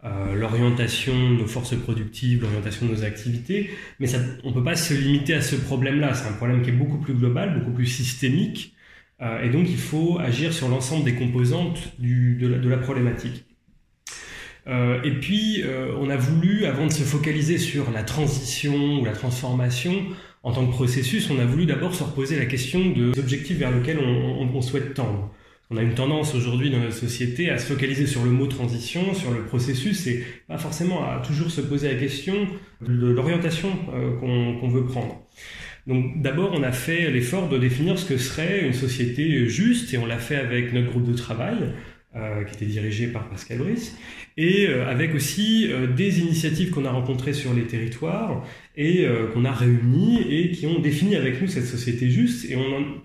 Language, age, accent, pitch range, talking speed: French, 20-39, French, 120-155 Hz, 190 wpm